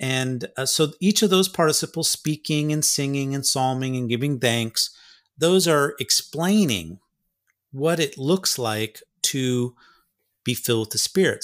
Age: 40-59